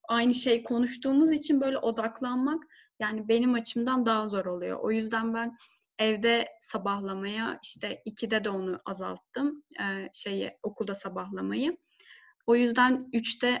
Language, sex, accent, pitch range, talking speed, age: Turkish, female, native, 210-245 Hz, 130 wpm, 10-29